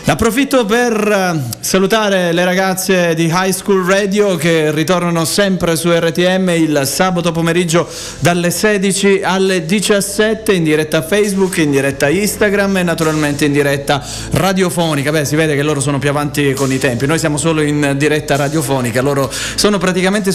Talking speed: 155 wpm